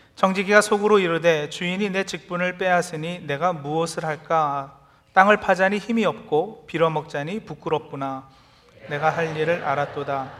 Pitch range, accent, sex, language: 145-170 Hz, native, male, Korean